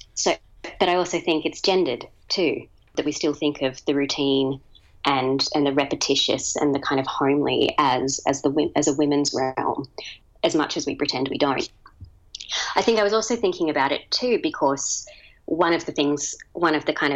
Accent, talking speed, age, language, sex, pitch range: Australian, 195 wpm, 30-49, English, female, 135-150 Hz